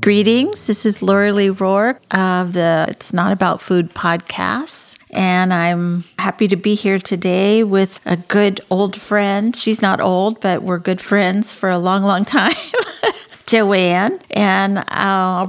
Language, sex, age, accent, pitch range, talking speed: English, female, 50-69, American, 170-200 Hz, 155 wpm